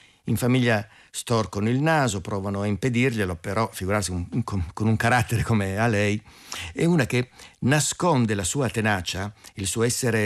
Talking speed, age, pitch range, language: 160 wpm, 50-69, 105-145 Hz, Italian